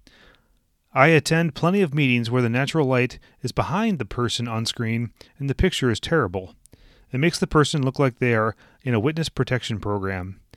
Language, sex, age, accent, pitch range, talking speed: English, male, 30-49, American, 105-145 Hz, 185 wpm